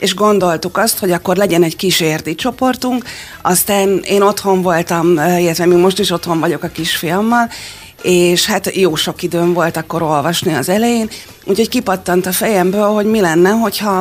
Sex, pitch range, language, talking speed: female, 165-195 Hz, Hungarian, 165 wpm